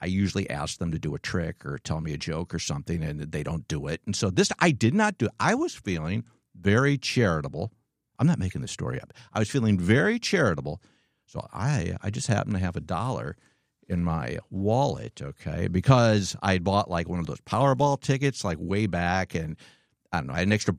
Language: English